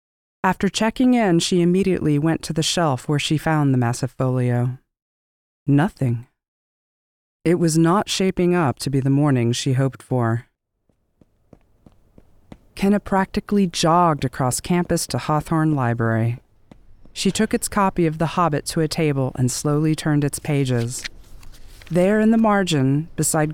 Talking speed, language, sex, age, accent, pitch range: 145 wpm, English, female, 40-59, American, 125-170 Hz